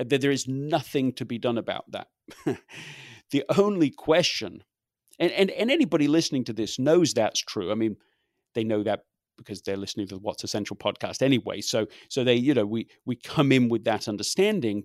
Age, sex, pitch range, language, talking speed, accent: 40-59, male, 120-145 Hz, English, 195 wpm, British